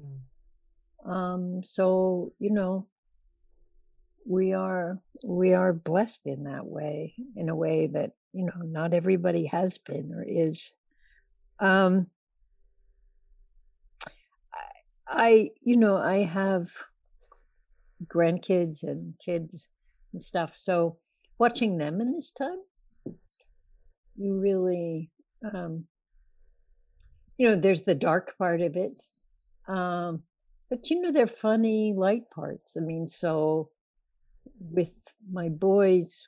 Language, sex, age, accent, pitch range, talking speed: English, female, 60-79, American, 155-195 Hz, 110 wpm